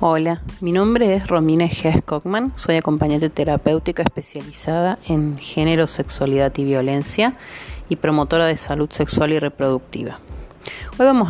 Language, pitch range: Spanish, 145-195 Hz